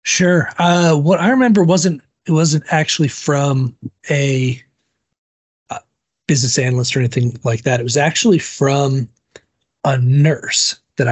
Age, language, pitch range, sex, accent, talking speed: 40-59, English, 120-150 Hz, male, American, 135 wpm